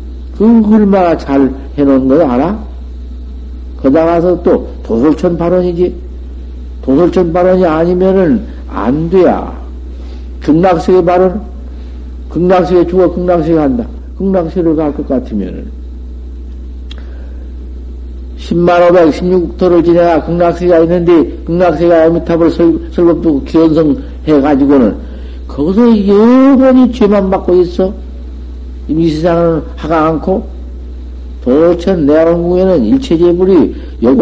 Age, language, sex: 50-69, Korean, male